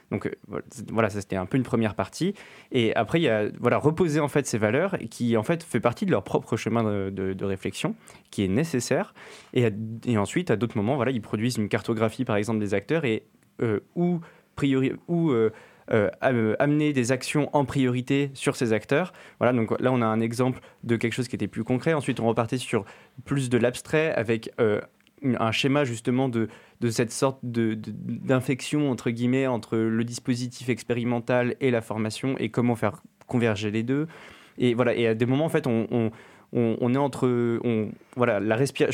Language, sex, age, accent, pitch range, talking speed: French, male, 20-39, French, 110-130 Hz, 200 wpm